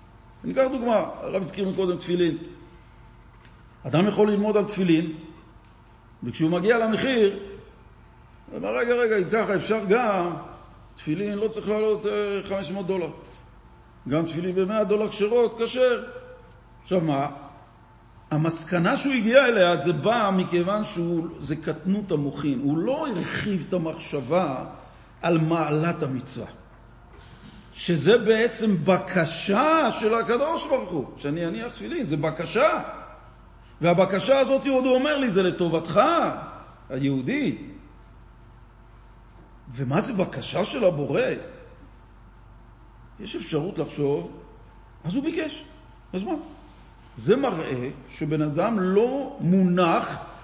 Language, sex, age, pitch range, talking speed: Hebrew, male, 50-69, 145-215 Hz, 110 wpm